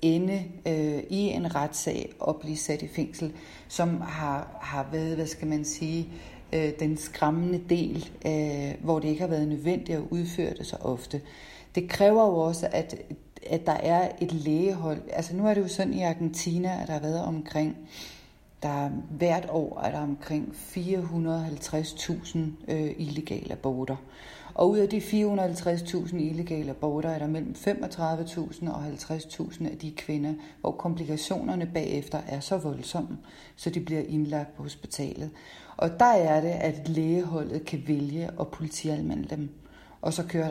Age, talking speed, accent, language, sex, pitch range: 40-59, 160 wpm, native, Danish, female, 150-170 Hz